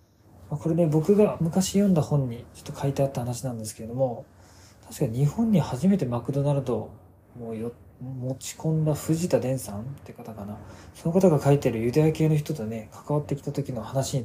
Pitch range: 110-155 Hz